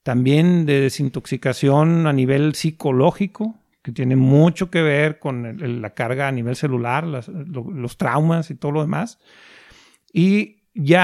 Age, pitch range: 40-59, 135-180 Hz